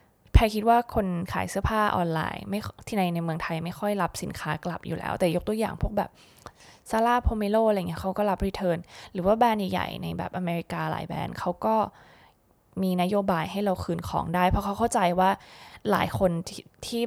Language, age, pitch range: Thai, 20-39, 170-210 Hz